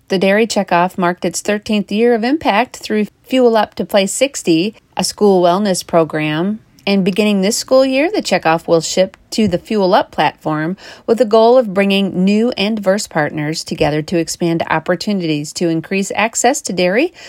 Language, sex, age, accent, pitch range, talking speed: English, female, 40-59, American, 165-220 Hz, 175 wpm